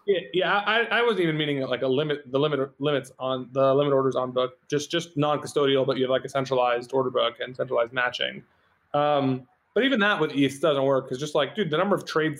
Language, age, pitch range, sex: English, 20-39, 130-155 Hz, male